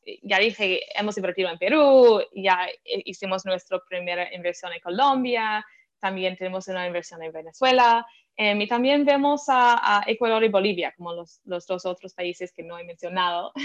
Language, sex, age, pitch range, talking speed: Spanish, female, 20-39, 190-255 Hz, 165 wpm